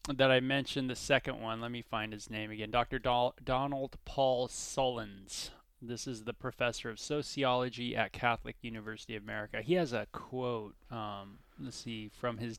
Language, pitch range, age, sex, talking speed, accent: English, 110-135 Hz, 20-39, male, 170 wpm, American